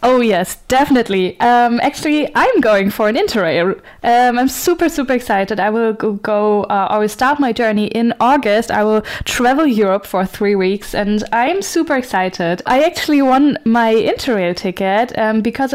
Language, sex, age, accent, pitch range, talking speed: English, female, 10-29, German, 210-250 Hz, 175 wpm